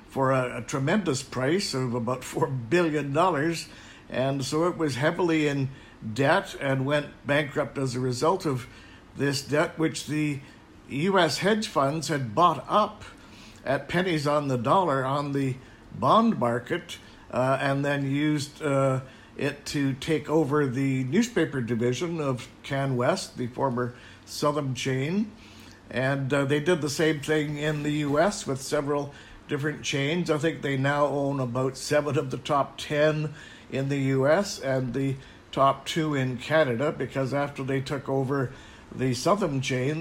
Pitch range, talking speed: 130-155 Hz, 155 wpm